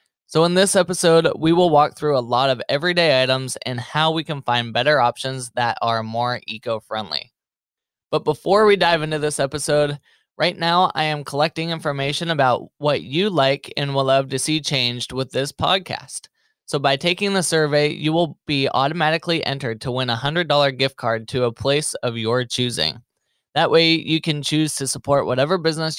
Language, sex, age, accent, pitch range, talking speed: English, male, 20-39, American, 125-160 Hz, 185 wpm